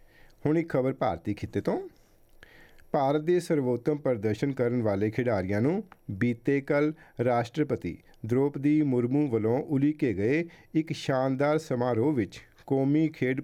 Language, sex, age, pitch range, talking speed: Punjabi, male, 50-69, 110-145 Hz, 120 wpm